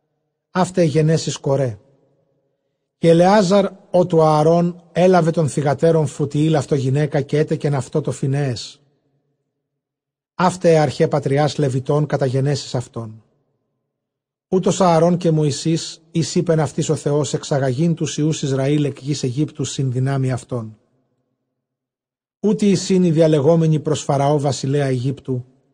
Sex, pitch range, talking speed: male, 140-165 Hz, 115 wpm